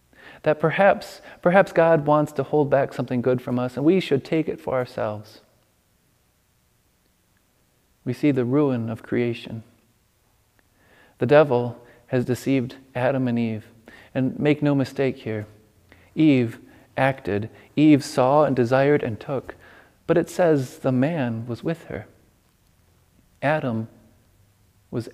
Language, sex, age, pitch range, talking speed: English, male, 40-59, 110-145 Hz, 130 wpm